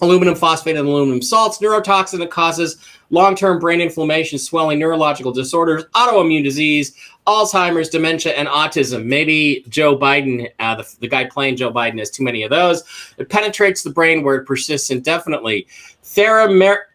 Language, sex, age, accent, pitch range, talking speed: English, male, 30-49, American, 135-175 Hz, 155 wpm